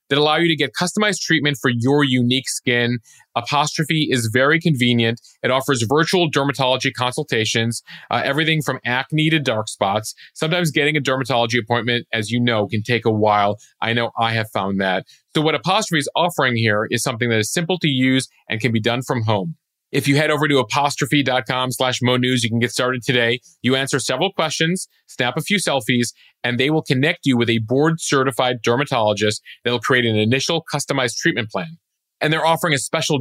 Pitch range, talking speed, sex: 120-150 Hz, 195 wpm, male